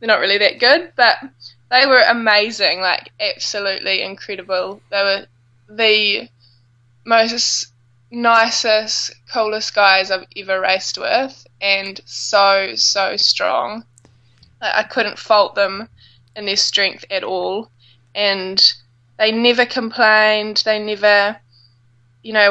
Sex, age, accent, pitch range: female, 10-29, Australian, 185-220 Hz